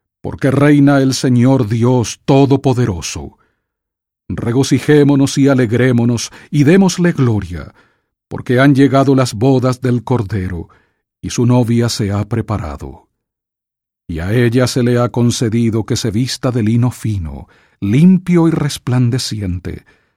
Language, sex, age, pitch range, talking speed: English, male, 50-69, 95-130 Hz, 120 wpm